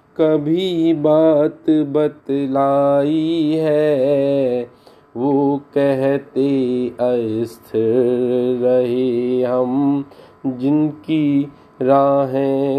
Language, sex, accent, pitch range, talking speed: Hindi, male, native, 125-155 Hz, 45 wpm